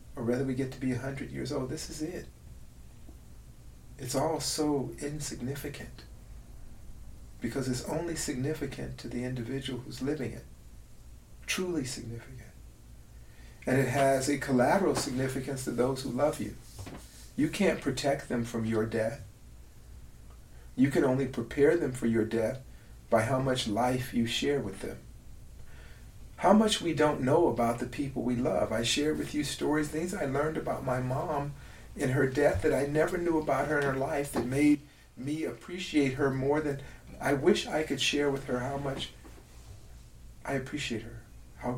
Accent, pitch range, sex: American, 115-145 Hz, male